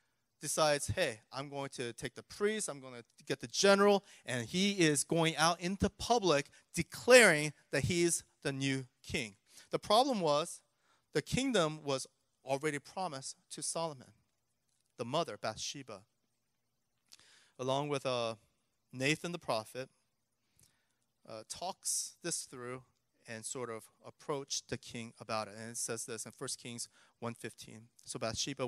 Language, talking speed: English, 140 wpm